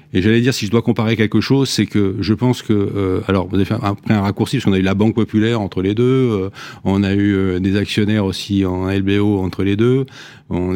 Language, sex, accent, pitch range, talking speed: French, male, French, 95-120 Hz, 260 wpm